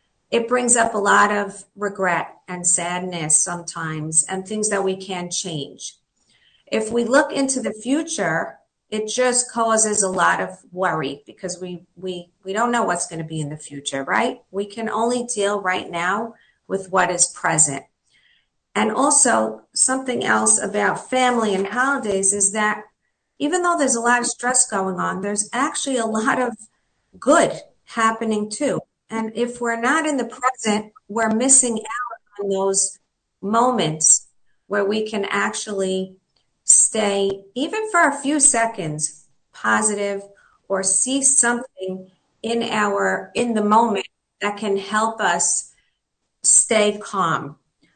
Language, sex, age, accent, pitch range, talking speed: English, female, 50-69, American, 190-240 Hz, 145 wpm